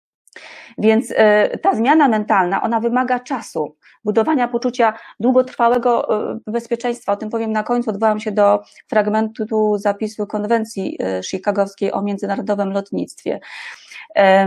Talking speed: 110 wpm